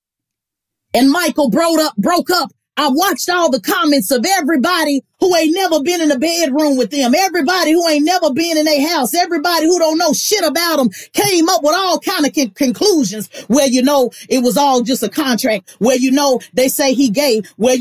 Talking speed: 200 wpm